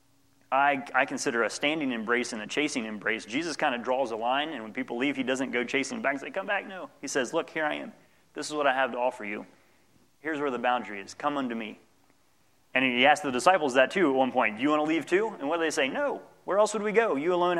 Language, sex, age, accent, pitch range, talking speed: English, male, 30-49, American, 130-170 Hz, 275 wpm